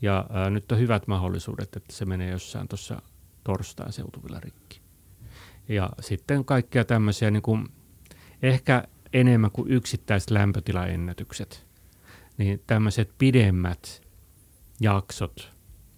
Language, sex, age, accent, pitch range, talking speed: Finnish, male, 30-49, native, 90-110 Hz, 110 wpm